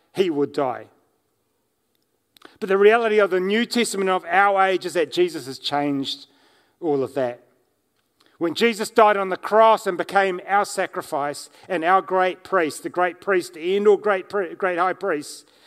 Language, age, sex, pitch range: English, 40-59, male, 150-200 Hz